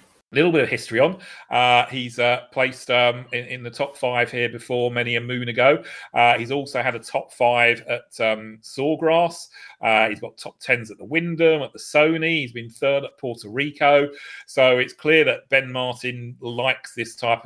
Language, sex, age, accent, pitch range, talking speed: English, male, 40-59, British, 115-135 Hz, 200 wpm